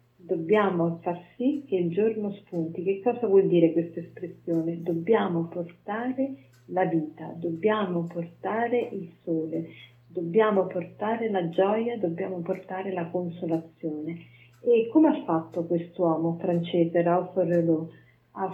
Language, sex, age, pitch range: Italian, female, 40-59, 170-210 Hz